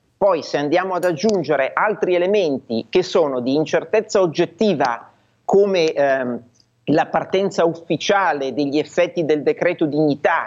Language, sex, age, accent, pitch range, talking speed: Italian, male, 40-59, native, 150-200 Hz, 125 wpm